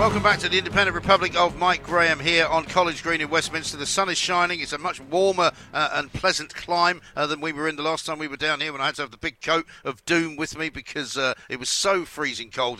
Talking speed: 270 wpm